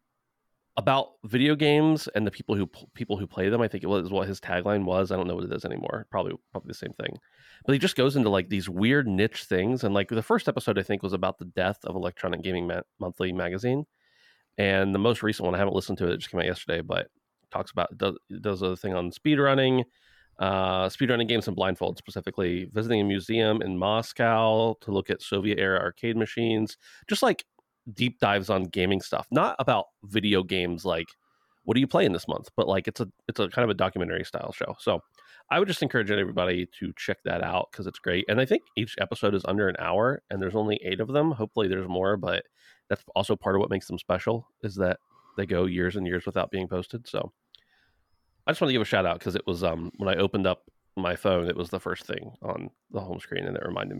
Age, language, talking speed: 30-49, English, 235 wpm